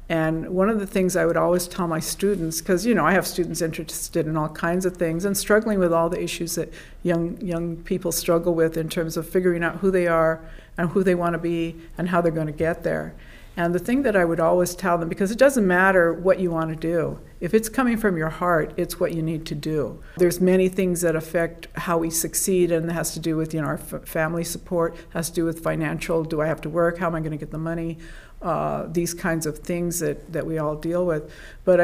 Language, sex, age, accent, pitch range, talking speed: English, female, 50-69, American, 165-185 Hz, 255 wpm